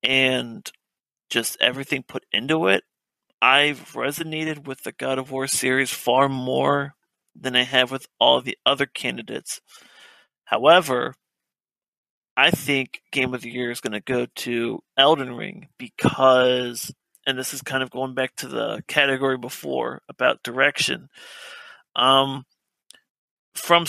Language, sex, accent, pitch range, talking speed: English, male, American, 125-140 Hz, 135 wpm